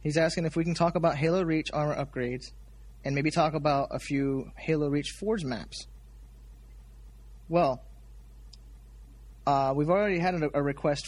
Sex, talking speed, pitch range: male, 155 wpm, 115-145 Hz